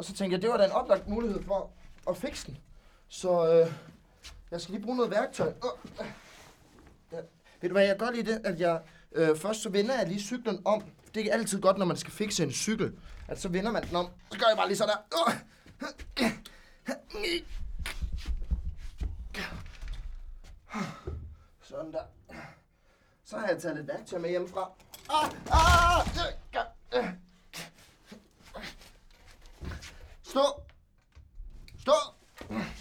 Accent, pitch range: native, 150-200 Hz